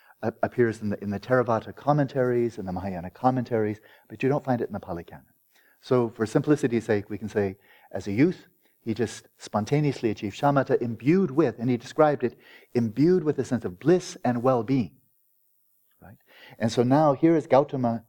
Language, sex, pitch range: English, male, 110-135 Hz